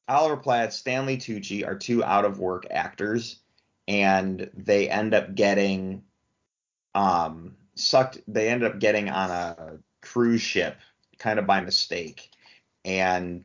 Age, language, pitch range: 30-49, English, 95-120 Hz